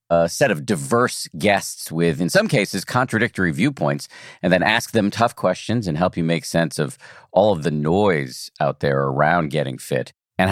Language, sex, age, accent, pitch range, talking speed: English, male, 50-69, American, 80-120 Hz, 190 wpm